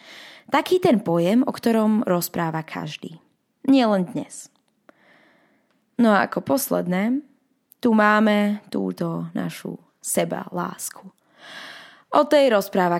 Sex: female